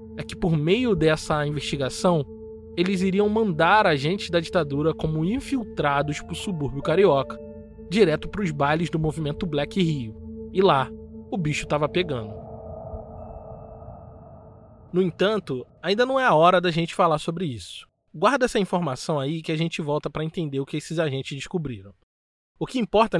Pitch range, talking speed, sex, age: 140-190 Hz, 155 wpm, male, 20-39